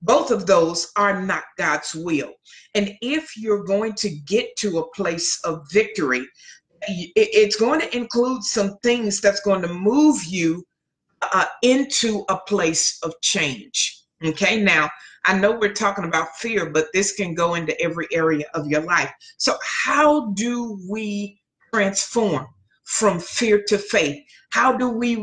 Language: English